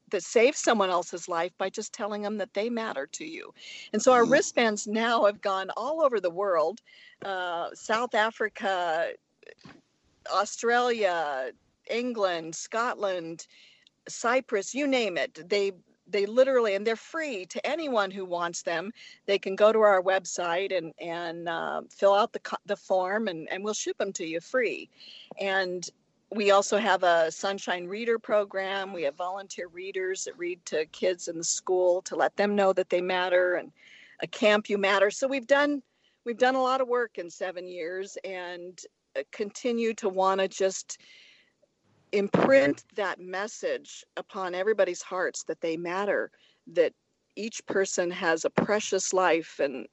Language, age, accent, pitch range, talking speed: English, 50-69, American, 185-245 Hz, 160 wpm